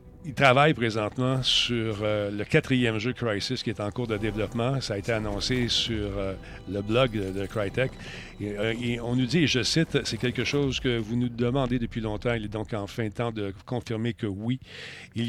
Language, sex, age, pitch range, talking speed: French, male, 50-69, 110-125 Hz, 205 wpm